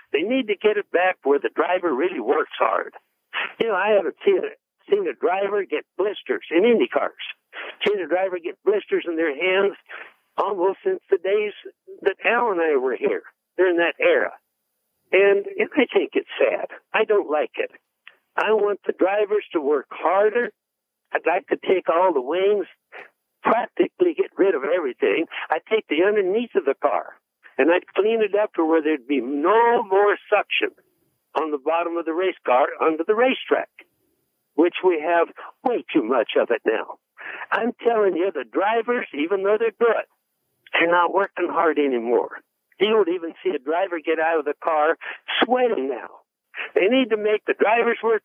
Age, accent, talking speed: 60-79, American, 180 wpm